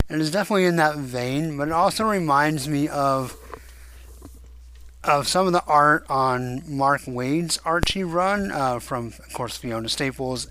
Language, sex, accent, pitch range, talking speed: English, male, American, 120-160 Hz, 155 wpm